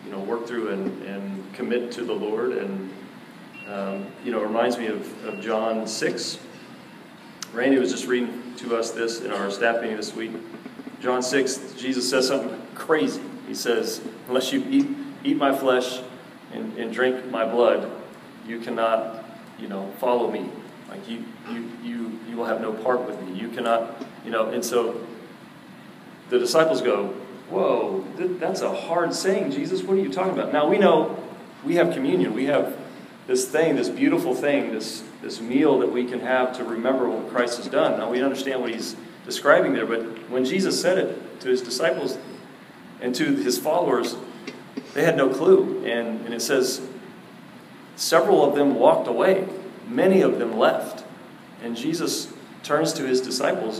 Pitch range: 115-180 Hz